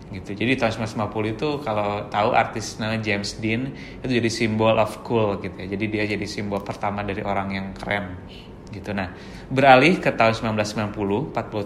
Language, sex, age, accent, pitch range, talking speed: Indonesian, male, 20-39, native, 105-120 Hz, 170 wpm